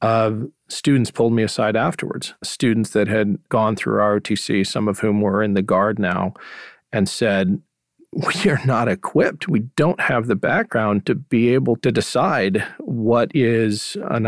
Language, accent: English, American